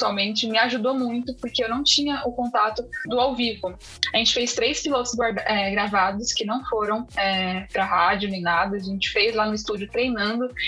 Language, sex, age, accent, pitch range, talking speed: Portuguese, female, 10-29, Brazilian, 205-255 Hz, 190 wpm